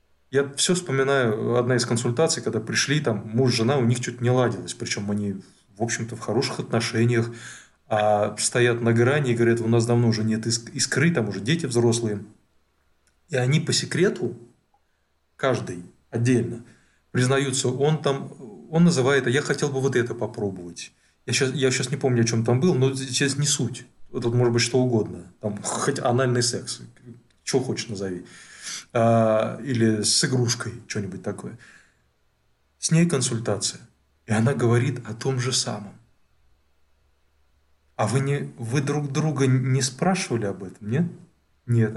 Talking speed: 155 wpm